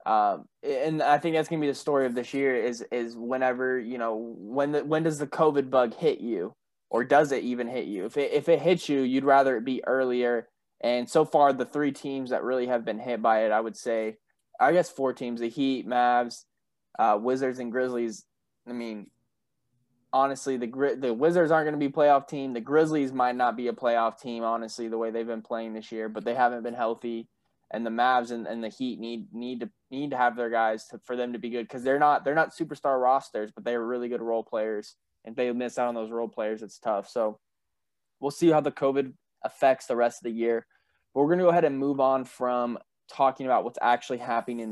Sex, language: male, English